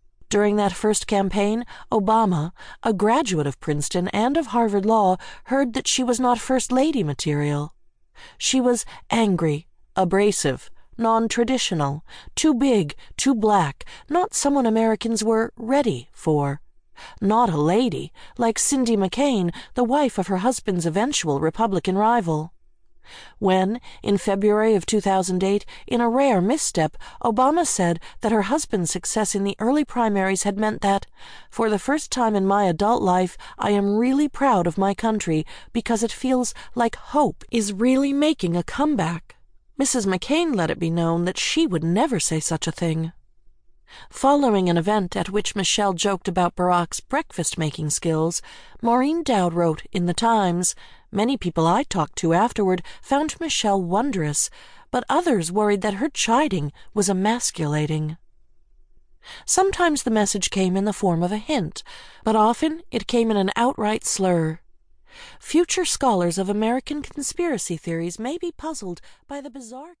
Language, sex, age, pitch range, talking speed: English, female, 50-69, 180-255 Hz, 150 wpm